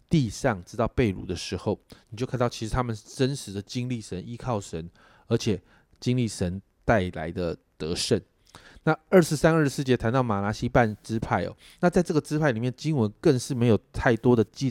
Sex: male